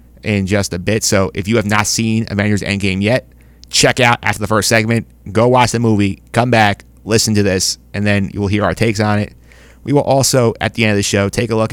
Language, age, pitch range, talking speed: English, 30-49, 95-115 Hz, 250 wpm